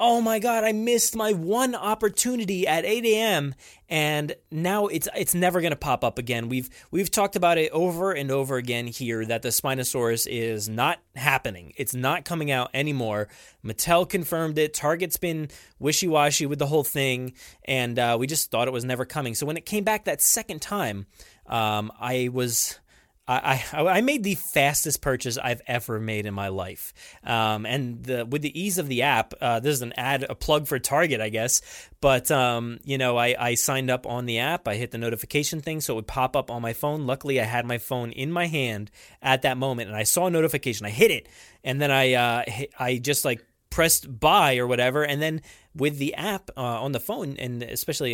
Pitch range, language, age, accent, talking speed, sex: 120-160 Hz, English, 20-39, American, 210 wpm, male